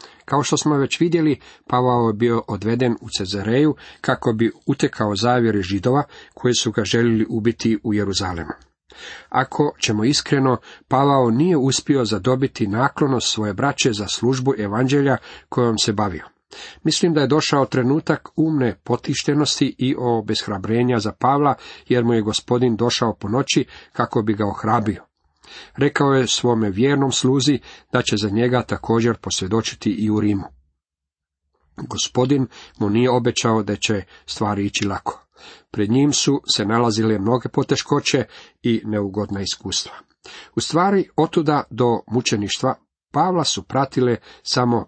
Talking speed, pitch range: 140 wpm, 105-135 Hz